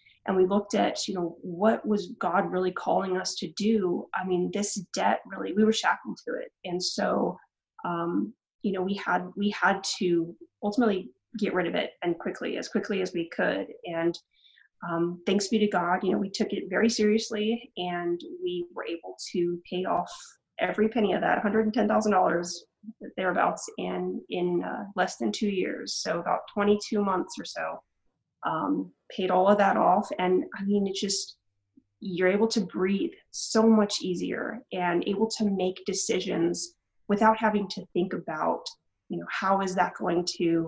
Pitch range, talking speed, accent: 175-210 Hz, 175 wpm, American